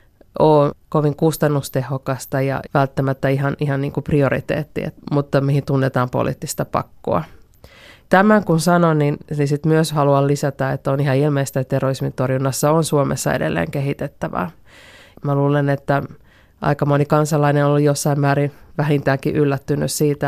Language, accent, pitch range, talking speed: Finnish, native, 140-155 Hz, 140 wpm